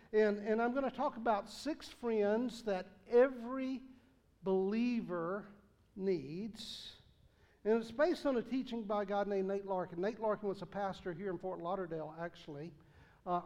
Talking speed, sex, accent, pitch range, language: 160 wpm, male, American, 180-225 Hz, English